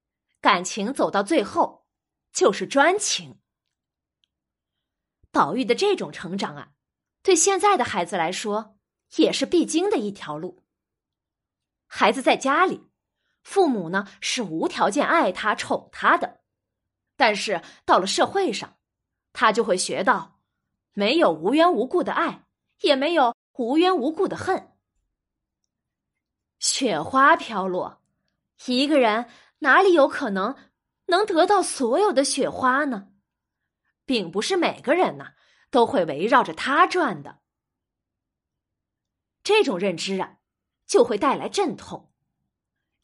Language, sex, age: Chinese, female, 20-39